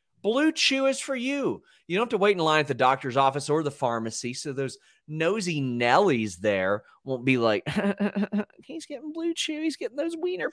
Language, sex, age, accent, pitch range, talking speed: English, male, 30-49, American, 115-175 Hz, 200 wpm